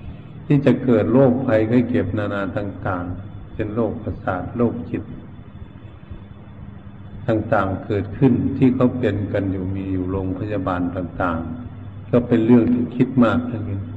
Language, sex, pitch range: Thai, male, 95-120 Hz